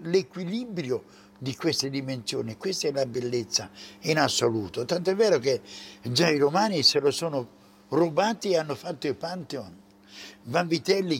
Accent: Italian